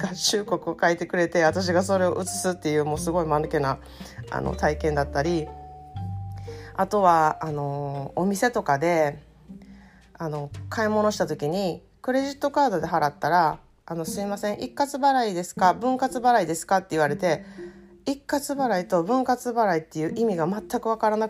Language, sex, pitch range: Japanese, female, 155-215 Hz